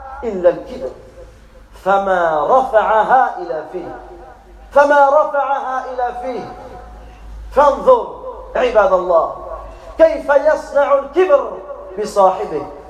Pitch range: 255-310 Hz